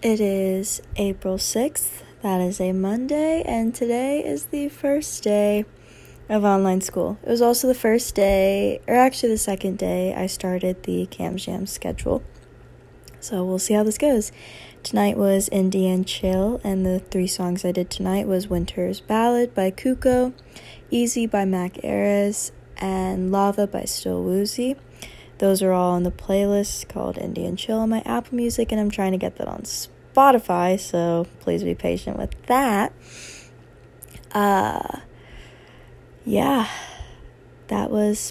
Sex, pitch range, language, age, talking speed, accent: female, 185-220 Hz, English, 20-39, 150 wpm, American